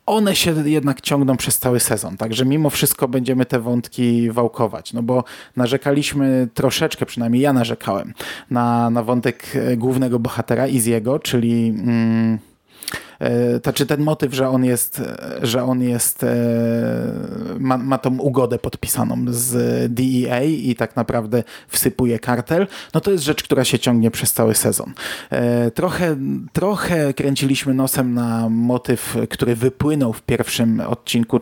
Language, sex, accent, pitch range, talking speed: Polish, male, native, 115-135 Hz, 135 wpm